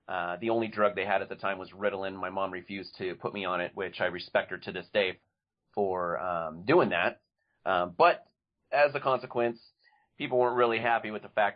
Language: English